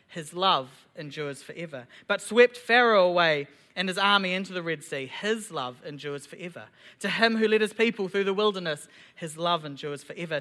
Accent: Australian